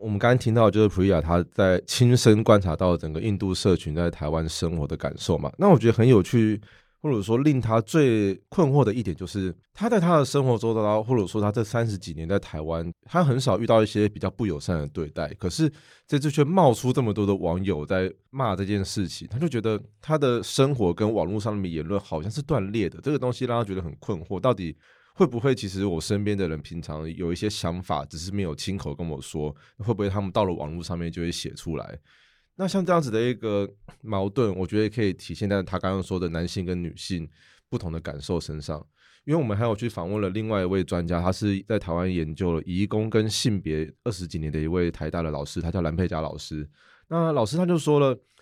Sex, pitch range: male, 85-115 Hz